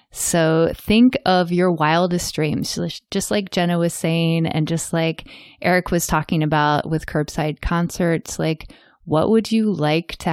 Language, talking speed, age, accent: English, 155 wpm, 20-39, American